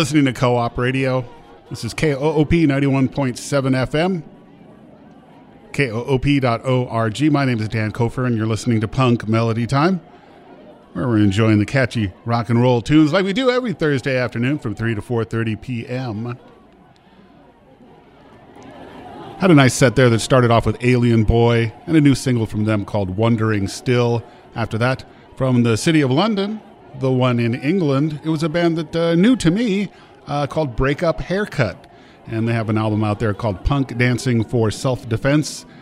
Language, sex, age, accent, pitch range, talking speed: English, male, 40-59, American, 115-145 Hz, 165 wpm